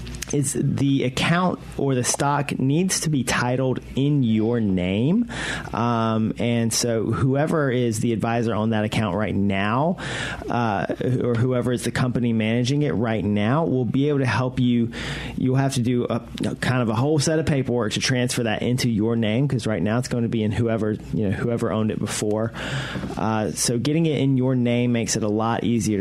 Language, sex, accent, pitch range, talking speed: English, male, American, 115-140 Hz, 200 wpm